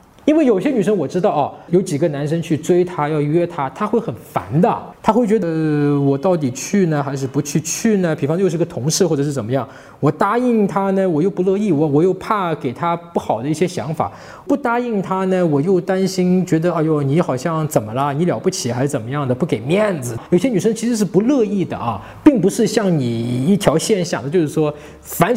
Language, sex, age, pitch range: Chinese, male, 20-39, 155-205 Hz